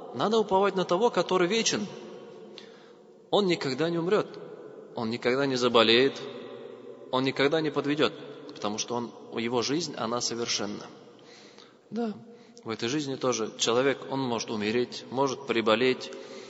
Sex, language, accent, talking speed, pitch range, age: male, Russian, native, 125 wpm, 125-195 Hz, 20-39